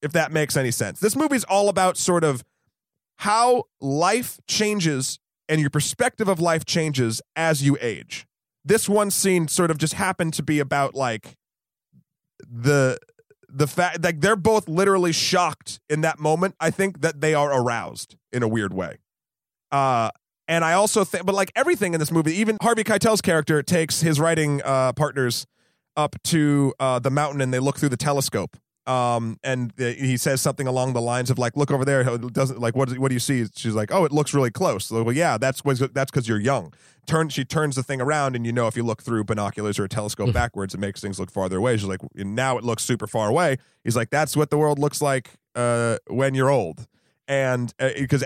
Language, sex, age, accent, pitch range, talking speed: English, male, 30-49, American, 120-165 Hz, 215 wpm